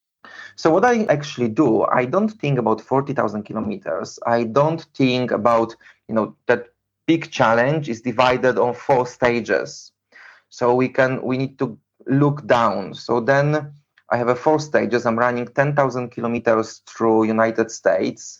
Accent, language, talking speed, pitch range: Polish, English, 155 wpm, 115-140 Hz